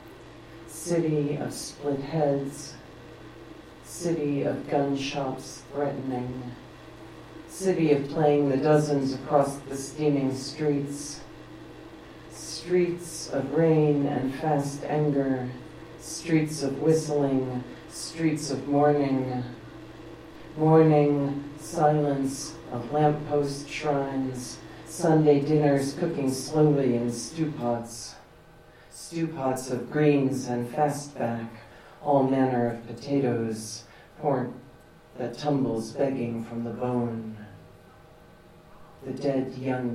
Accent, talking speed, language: American, 90 wpm, English